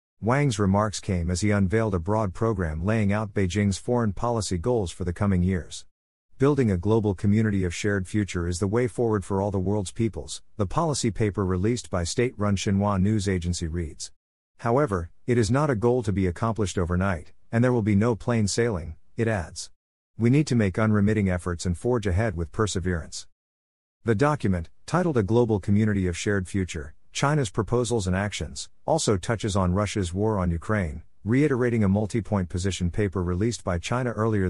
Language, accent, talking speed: English, American, 180 wpm